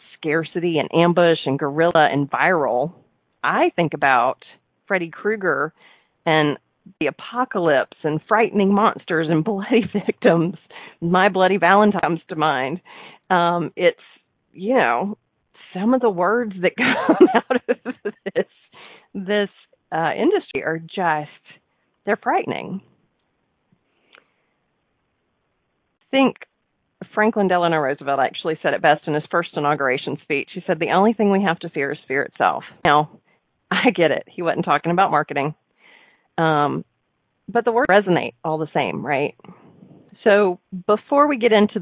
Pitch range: 155-215 Hz